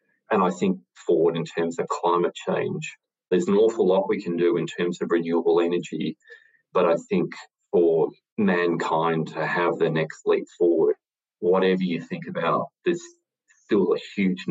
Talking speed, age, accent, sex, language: 165 wpm, 30-49, Australian, male, English